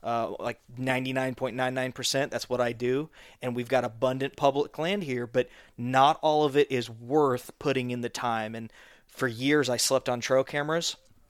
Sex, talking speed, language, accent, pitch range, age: male, 175 wpm, English, American, 120-135 Hz, 20-39